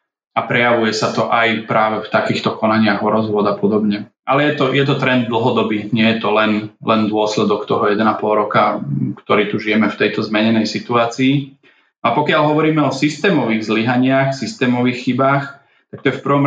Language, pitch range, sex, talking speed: Slovak, 110-125 Hz, male, 175 wpm